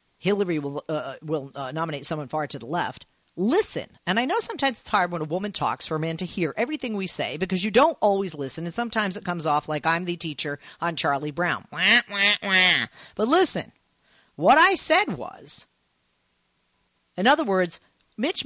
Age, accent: 40-59, American